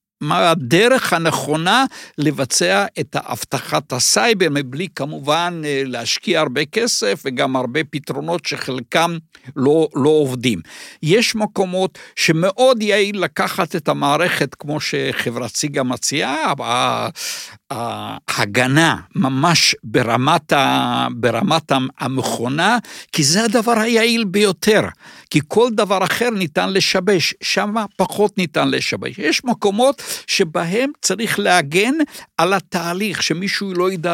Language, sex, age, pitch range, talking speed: English, male, 60-79, 140-200 Hz, 105 wpm